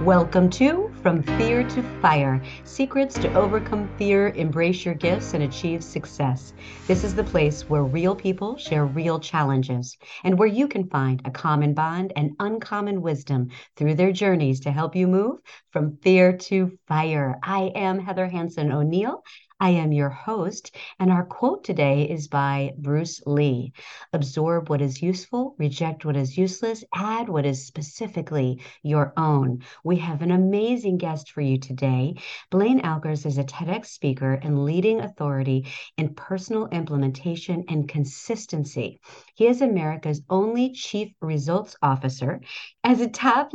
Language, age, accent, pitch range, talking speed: English, 50-69, American, 145-195 Hz, 155 wpm